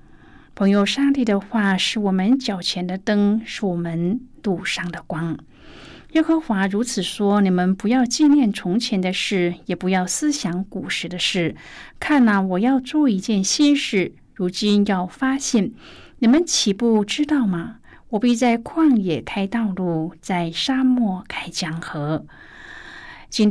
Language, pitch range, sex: Chinese, 180-240 Hz, female